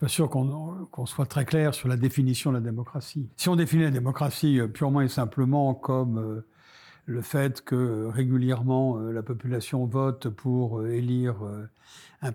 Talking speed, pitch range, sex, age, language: 170 wpm, 115-145 Hz, male, 60-79, French